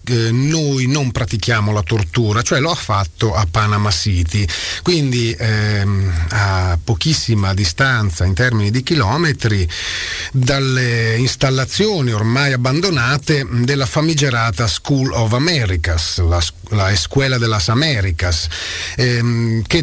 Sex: male